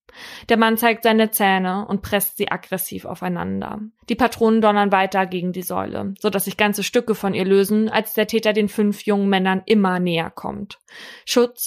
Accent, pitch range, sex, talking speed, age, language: German, 190-215 Hz, female, 185 wpm, 20-39, German